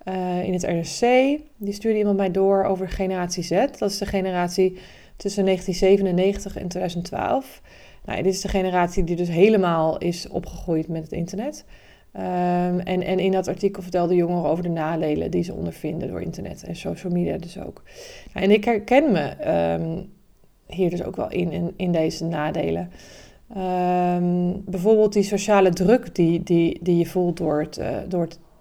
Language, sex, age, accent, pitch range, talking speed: Dutch, female, 20-39, Dutch, 180-210 Hz, 155 wpm